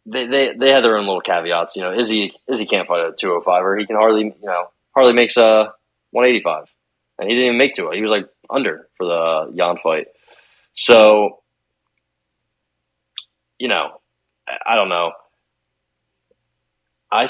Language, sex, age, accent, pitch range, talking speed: English, male, 20-39, American, 100-130 Hz, 185 wpm